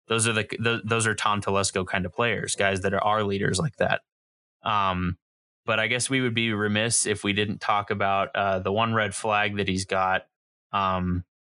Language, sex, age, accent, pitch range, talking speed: English, male, 20-39, American, 100-115 Hz, 210 wpm